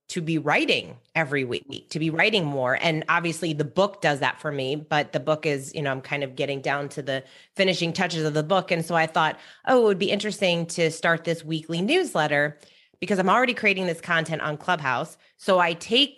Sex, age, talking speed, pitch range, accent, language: female, 30-49, 225 wpm, 155-190 Hz, American, English